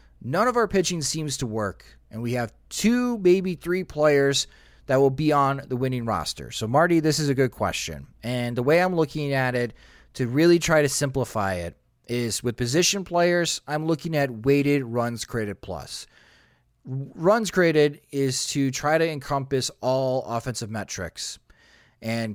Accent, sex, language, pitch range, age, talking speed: American, male, English, 115-145 Hz, 30-49, 170 wpm